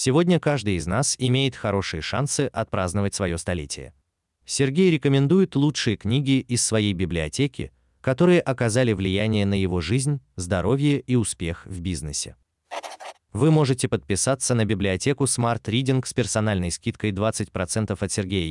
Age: 30-49